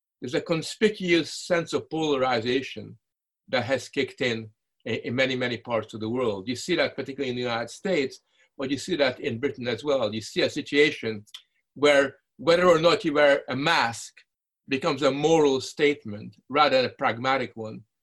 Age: 50-69